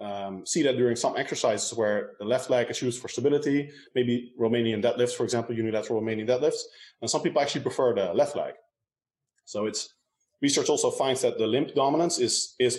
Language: English